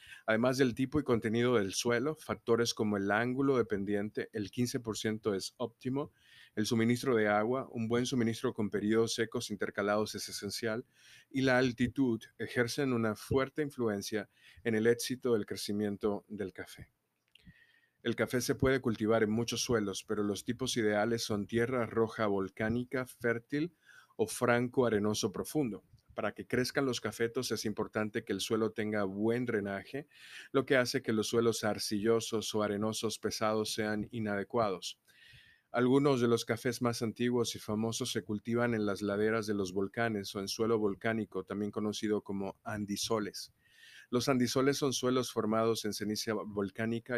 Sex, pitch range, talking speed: male, 105-120 Hz, 155 wpm